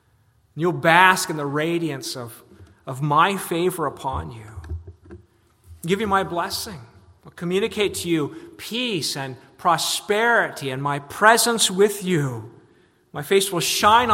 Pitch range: 115-160 Hz